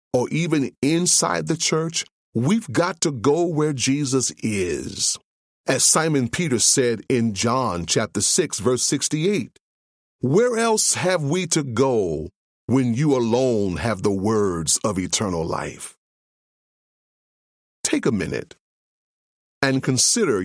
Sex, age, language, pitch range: male, 40-59, English, 105-150 Hz